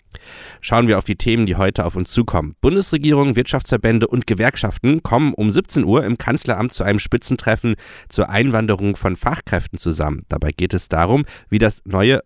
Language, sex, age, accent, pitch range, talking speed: German, male, 30-49, German, 95-120 Hz, 170 wpm